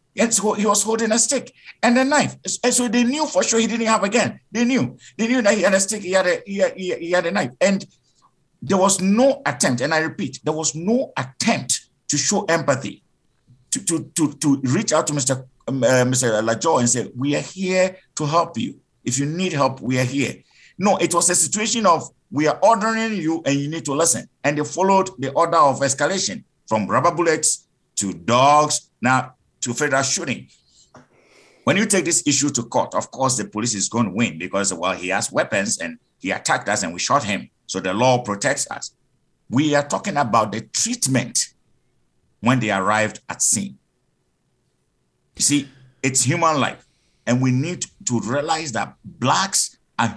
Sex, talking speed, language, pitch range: male, 200 wpm, English, 130-190 Hz